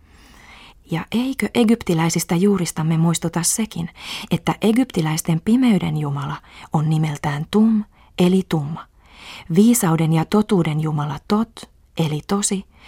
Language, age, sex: Finnish, 30-49, female